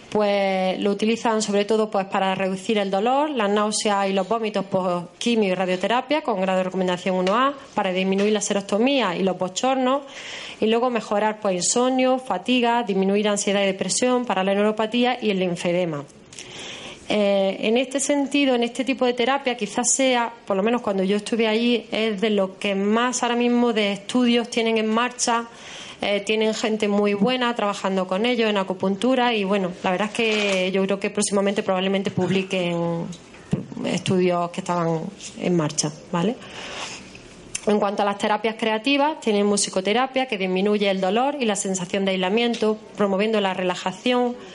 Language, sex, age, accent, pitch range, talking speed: Spanish, female, 20-39, Spanish, 190-235 Hz, 170 wpm